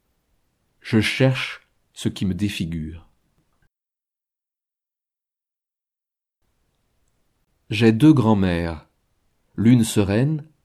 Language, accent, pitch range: French, French, 95-120 Hz